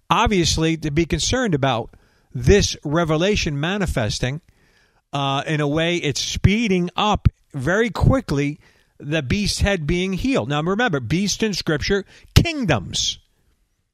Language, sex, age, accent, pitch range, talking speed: English, male, 50-69, American, 135-185 Hz, 120 wpm